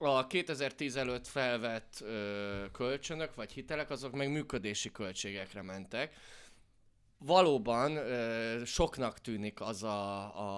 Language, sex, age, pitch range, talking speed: Hungarian, male, 20-39, 105-120 Hz, 100 wpm